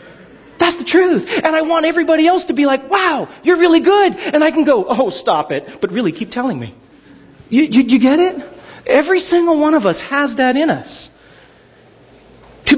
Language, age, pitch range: English, 30-49, 190-290 Hz